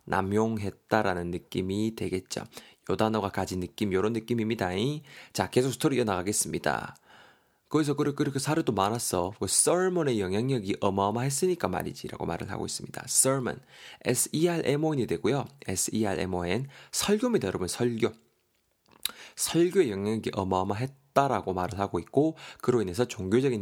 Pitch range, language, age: 95-135 Hz, Korean, 20-39